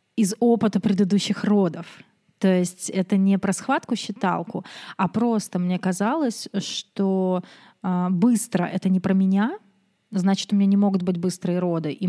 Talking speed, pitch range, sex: 155 wpm, 190-230 Hz, female